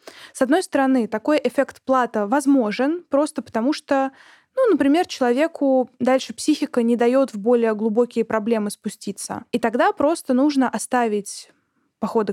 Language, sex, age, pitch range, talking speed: Russian, female, 20-39, 215-270 Hz, 135 wpm